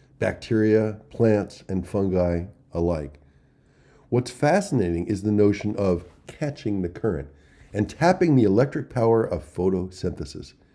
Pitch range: 90-135 Hz